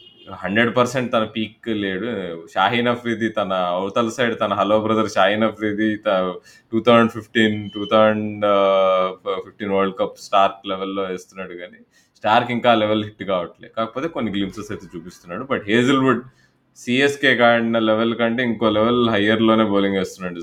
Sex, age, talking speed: male, 20-39, 145 wpm